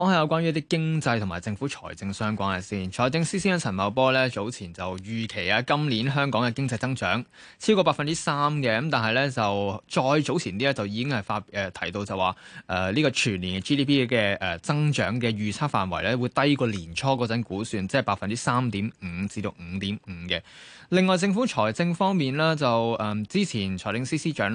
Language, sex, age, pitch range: Chinese, male, 20-39, 100-145 Hz